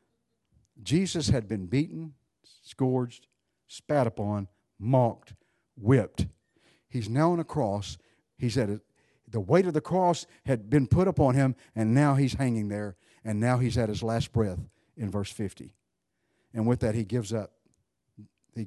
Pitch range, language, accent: 105-140 Hz, English, American